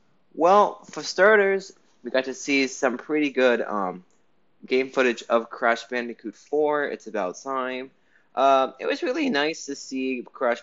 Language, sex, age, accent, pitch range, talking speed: English, male, 20-39, American, 100-130 Hz, 160 wpm